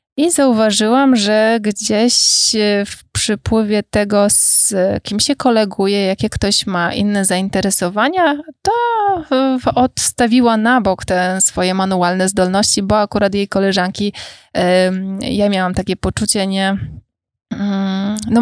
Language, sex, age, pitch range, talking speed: Polish, female, 20-39, 185-215 Hz, 110 wpm